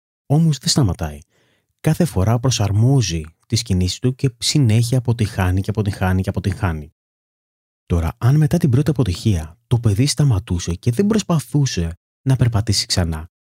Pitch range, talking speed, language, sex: 90-140 Hz, 140 wpm, Greek, male